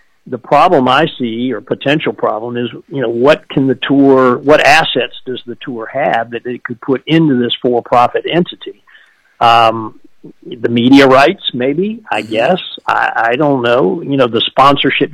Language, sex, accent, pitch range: English, male, American, 120-145 Hz